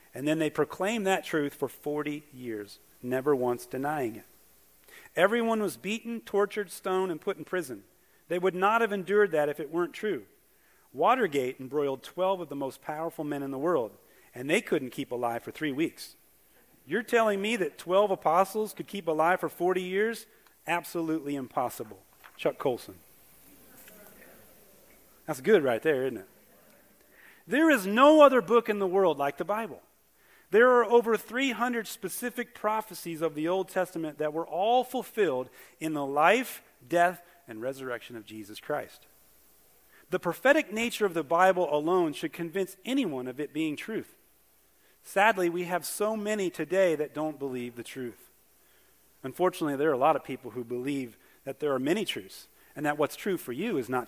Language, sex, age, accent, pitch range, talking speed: English, male, 40-59, American, 145-205 Hz, 170 wpm